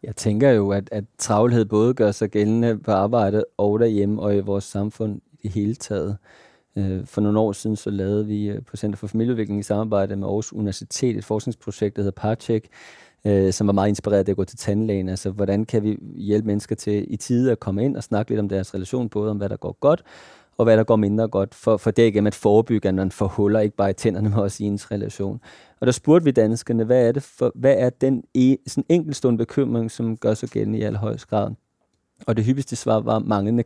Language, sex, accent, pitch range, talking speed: Danish, male, native, 105-130 Hz, 225 wpm